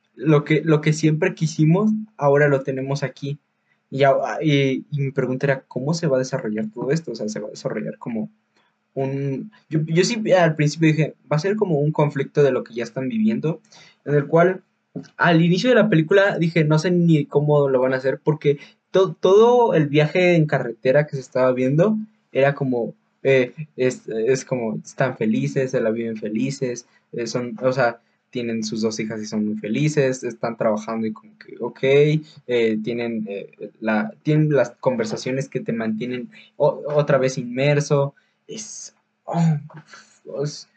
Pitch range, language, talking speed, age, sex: 125-160 Hz, Spanish, 185 wpm, 20-39, male